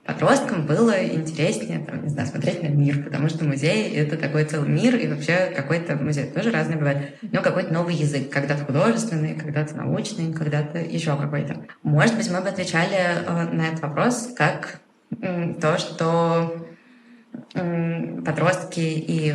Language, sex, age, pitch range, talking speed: Russian, female, 20-39, 155-190 Hz, 150 wpm